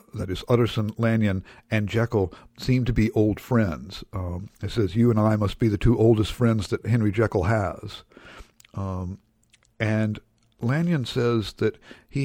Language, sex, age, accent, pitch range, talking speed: English, male, 60-79, American, 100-120 Hz, 160 wpm